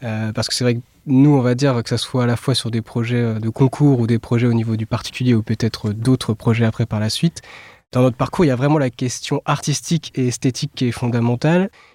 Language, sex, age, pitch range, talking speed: French, male, 20-39, 120-140 Hz, 255 wpm